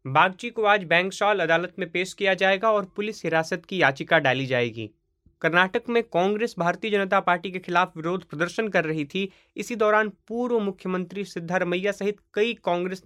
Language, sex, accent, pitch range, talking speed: Hindi, male, native, 165-205 Hz, 170 wpm